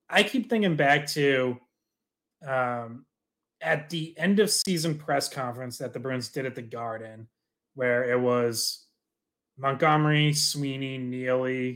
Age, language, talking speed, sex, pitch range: 30-49, English, 135 wpm, male, 125-155 Hz